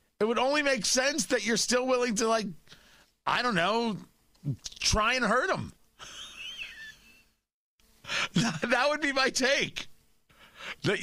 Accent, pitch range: American, 125-185 Hz